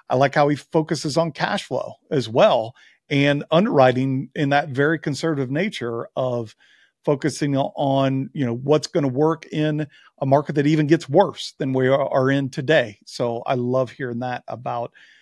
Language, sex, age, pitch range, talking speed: English, male, 40-59, 130-160 Hz, 175 wpm